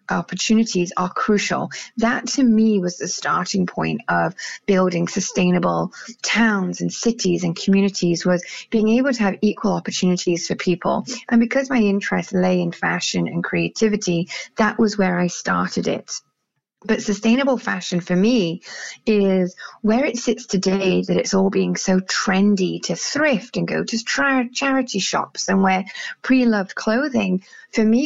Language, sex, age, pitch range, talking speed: English, female, 30-49, 180-225 Hz, 150 wpm